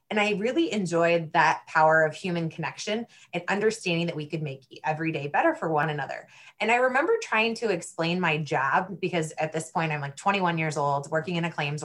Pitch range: 155-185 Hz